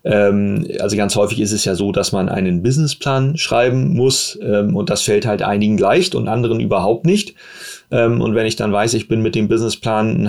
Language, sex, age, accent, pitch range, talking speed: German, male, 30-49, German, 105-130 Hz, 200 wpm